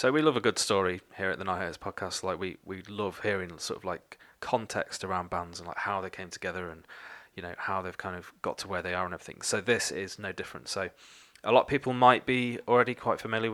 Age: 30-49